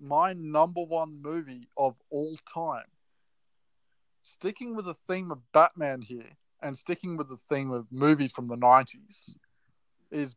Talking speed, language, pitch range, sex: 145 wpm, English, 125-155 Hz, male